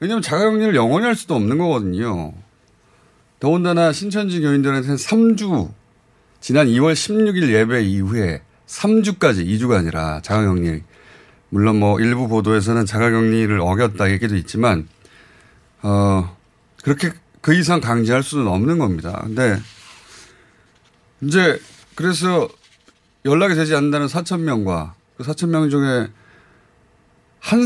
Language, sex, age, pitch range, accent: Korean, male, 30-49, 110-170 Hz, native